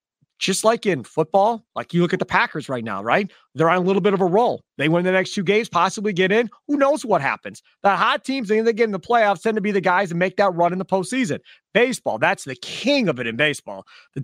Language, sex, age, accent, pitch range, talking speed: English, male, 30-49, American, 175-235 Hz, 265 wpm